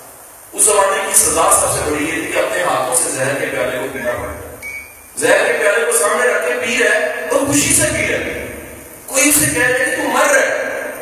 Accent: Indian